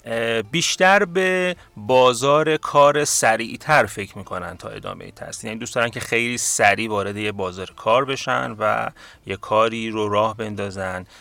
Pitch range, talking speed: 100-145 Hz, 145 wpm